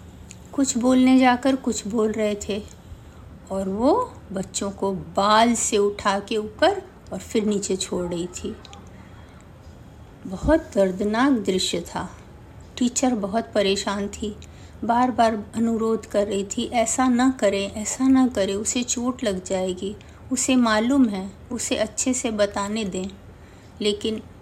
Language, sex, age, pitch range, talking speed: Hindi, female, 50-69, 190-250 Hz, 135 wpm